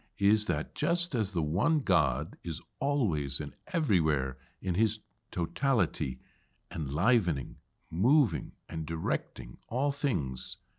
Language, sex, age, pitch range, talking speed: English, male, 50-69, 80-110 Hz, 110 wpm